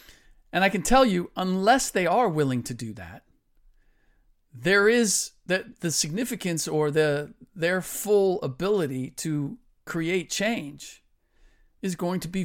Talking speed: 140 wpm